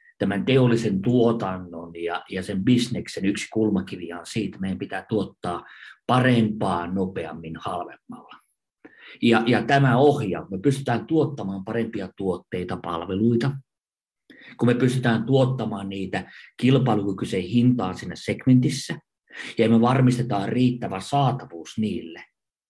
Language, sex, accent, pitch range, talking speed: Finnish, male, native, 100-135 Hz, 110 wpm